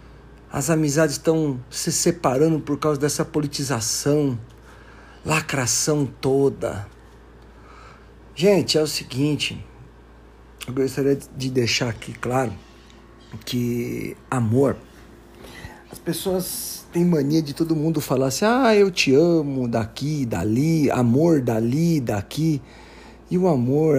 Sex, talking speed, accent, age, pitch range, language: male, 110 wpm, Brazilian, 50-69, 120-155 Hz, Portuguese